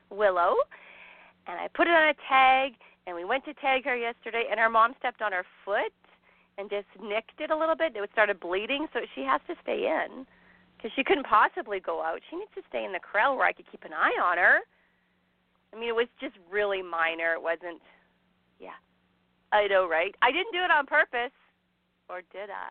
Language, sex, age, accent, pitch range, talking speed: English, female, 40-59, American, 180-265 Hz, 210 wpm